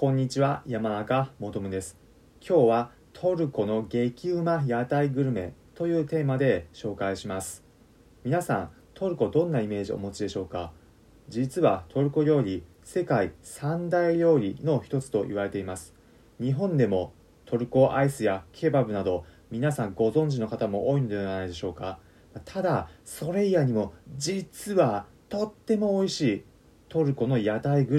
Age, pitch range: 30-49, 95-155 Hz